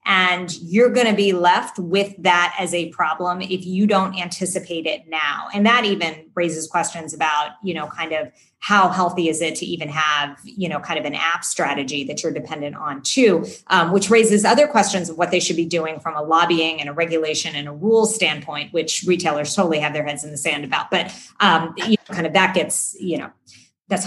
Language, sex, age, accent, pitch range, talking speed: English, female, 30-49, American, 160-205 Hz, 220 wpm